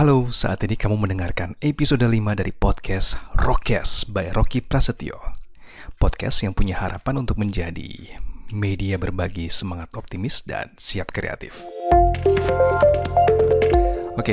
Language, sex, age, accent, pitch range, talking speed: Indonesian, male, 30-49, native, 90-110 Hz, 115 wpm